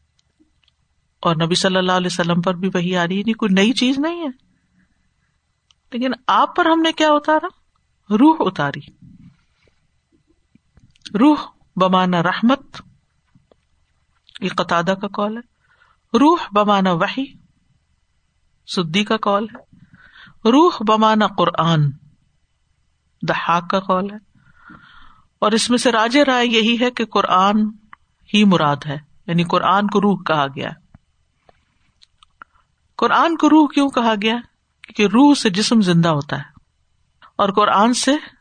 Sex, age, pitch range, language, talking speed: female, 50-69, 160-225 Hz, Urdu, 130 wpm